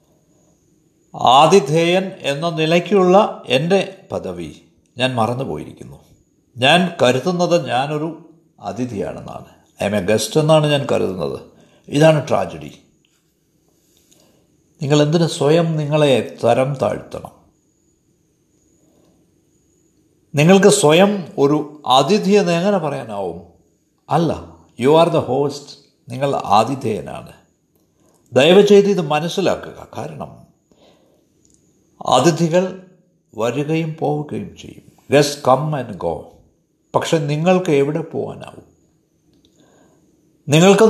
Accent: native